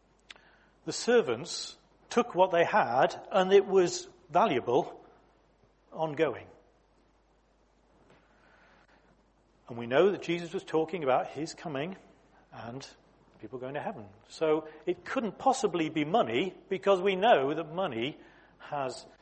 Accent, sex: British, male